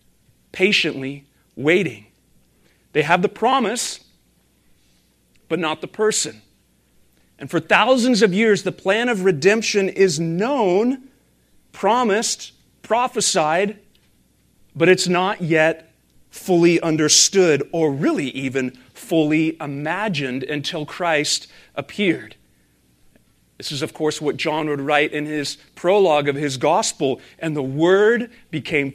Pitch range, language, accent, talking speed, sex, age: 140-185 Hz, English, American, 115 wpm, male, 40-59